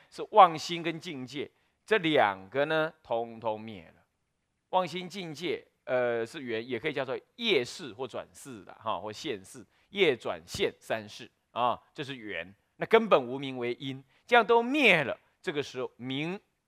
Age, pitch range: 30-49, 125-190 Hz